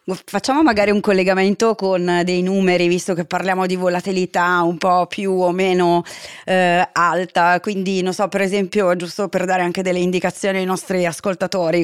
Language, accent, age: Italian, native, 30-49